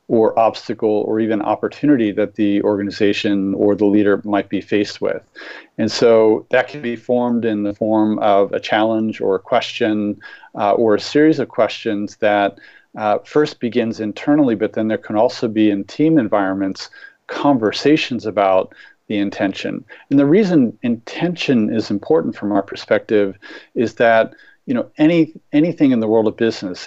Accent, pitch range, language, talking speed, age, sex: American, 105-125 Hz, English, 165 wpm, 40-59, male